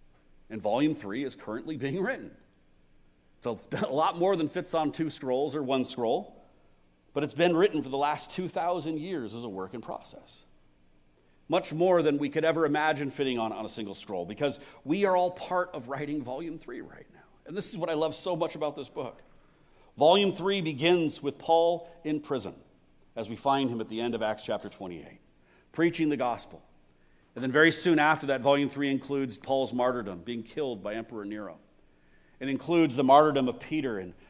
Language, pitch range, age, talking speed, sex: English, 110-155 Hz, 50-69, 195 wpm, male